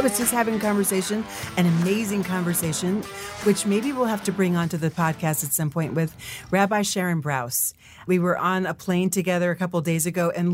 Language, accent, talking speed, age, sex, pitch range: English, American, 210 wpm, 40-59, female, 170-250 Hz